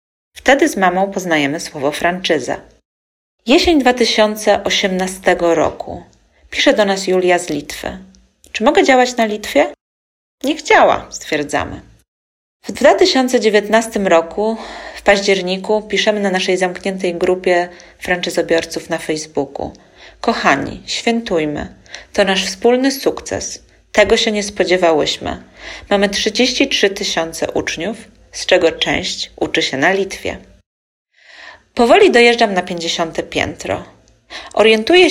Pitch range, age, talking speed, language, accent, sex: 165-215 Hz, 40-59, 110 wpm, Polish, native, female